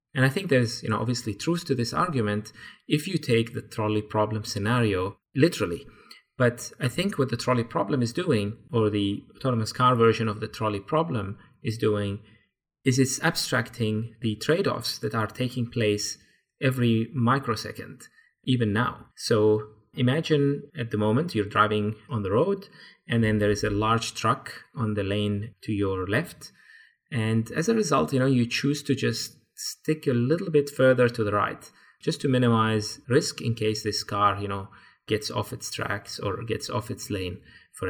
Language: English